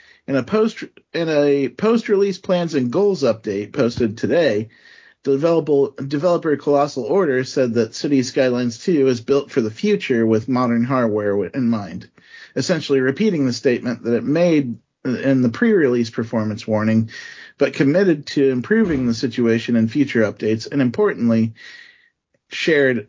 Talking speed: 145 wpm